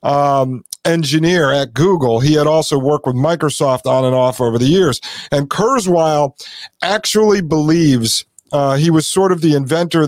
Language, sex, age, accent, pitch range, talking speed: English, male, 40-59, American, 135-165 Hz, 165 wpm